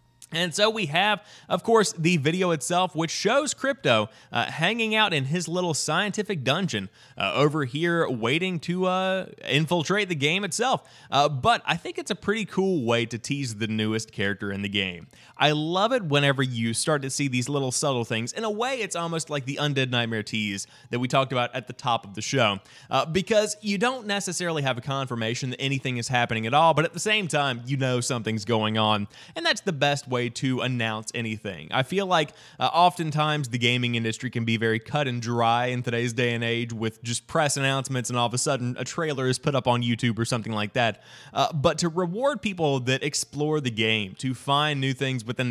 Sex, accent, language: male, American, English